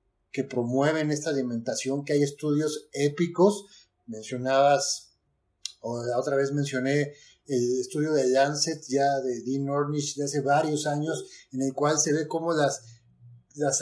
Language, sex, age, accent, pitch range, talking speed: Spanish, male, 40-59, Mexican, 130-160 Hz, 150 wpm